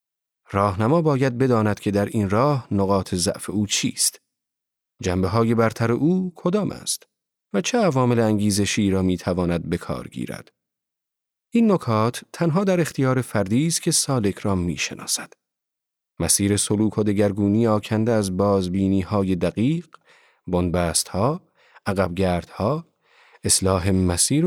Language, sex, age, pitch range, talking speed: Persian, male, 40-59, 95-145 Hz, 130 wpm